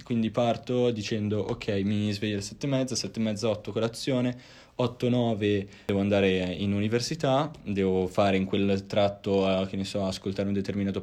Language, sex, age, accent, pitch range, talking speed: Italian, male, 20-39, native, 100-120 Hz, 180 wpm